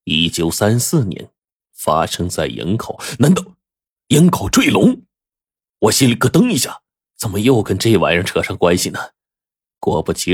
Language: Chinese